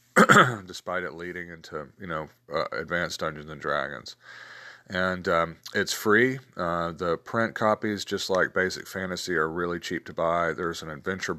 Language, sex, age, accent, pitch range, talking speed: English, male, 40-59, American, 85-105 Hz, 160 wpm